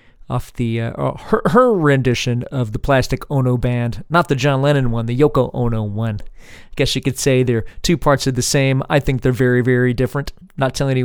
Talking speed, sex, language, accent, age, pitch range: 215 wpm, male, English, American, 40-59, 125-150 Hz